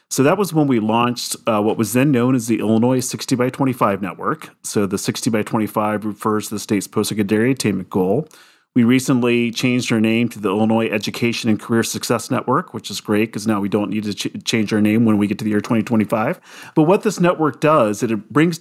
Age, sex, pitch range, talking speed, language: 40-59, male, 105-130 Hz, 225 wpm, English